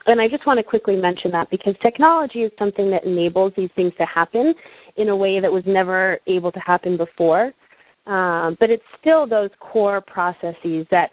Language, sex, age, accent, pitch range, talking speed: English, female, 30-49, American, 175-210 Hz, 195 wpm